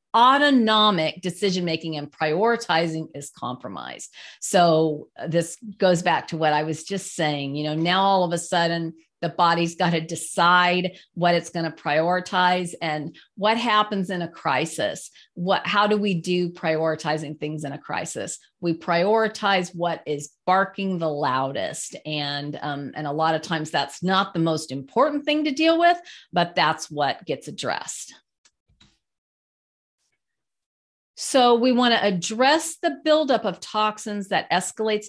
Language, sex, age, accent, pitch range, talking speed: English, female, 40-59, American, 160-200 Hz, 150 wpm